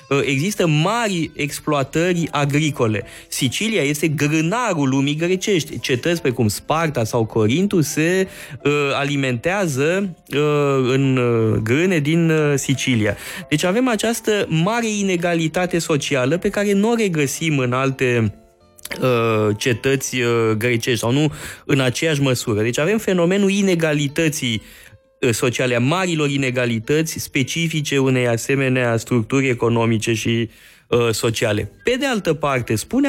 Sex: male